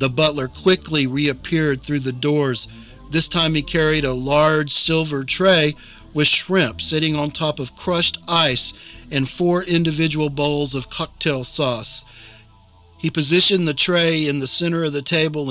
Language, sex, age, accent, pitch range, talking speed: English, male, 50-69, American, 140-170 Hz, 155 wpm